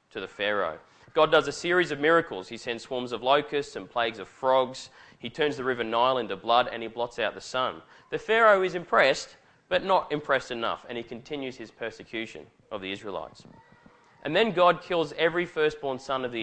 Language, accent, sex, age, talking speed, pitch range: English, Australian, male, 20-39, 205 wpm, 120-155 Hz